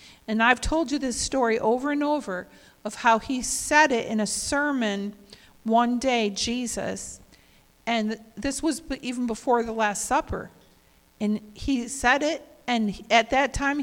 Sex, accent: female, American